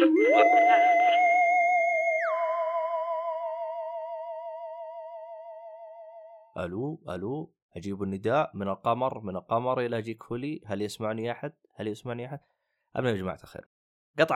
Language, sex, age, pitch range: Arabic, male, 20-39, 95-150 Hz